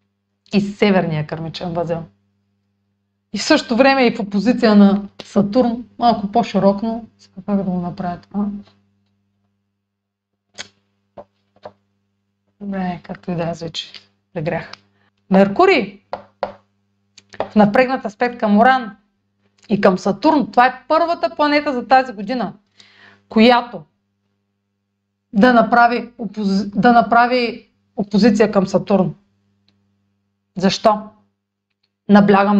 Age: 30-49